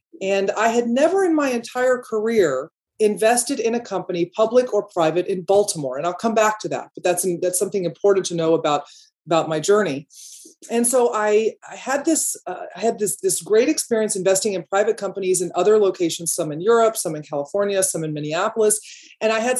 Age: 30-49